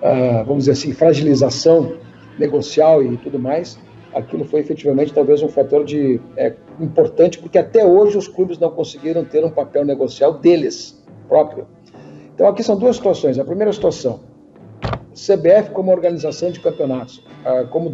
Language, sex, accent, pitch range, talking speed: Portuguese, male, Brazilian, 145-190 Hz, 155 wpm